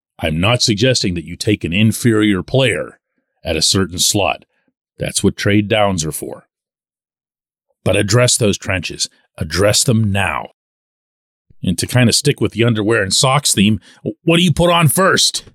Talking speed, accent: 165 wpm, American